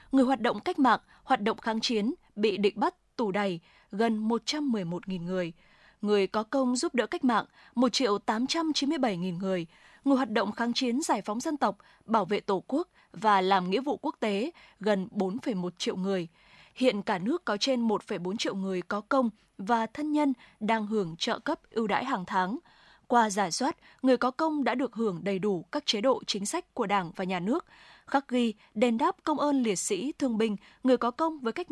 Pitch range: 205-270 Hz